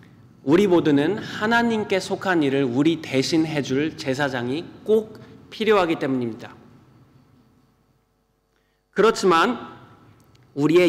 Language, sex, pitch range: Korean, male, 145-200 Hz